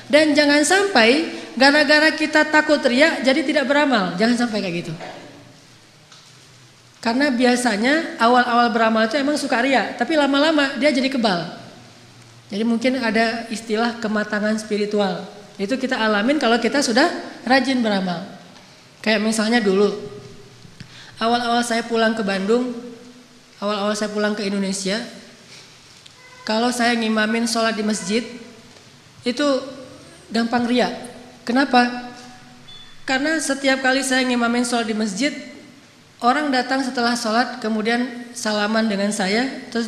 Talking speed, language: 120 wpm, Indonesian